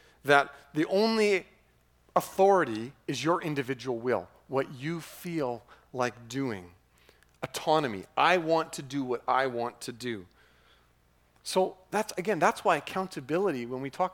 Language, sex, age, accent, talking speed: English, male, 40-59, American, 135 wpm